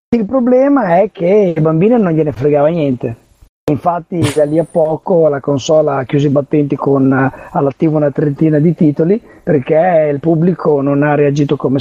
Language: Italian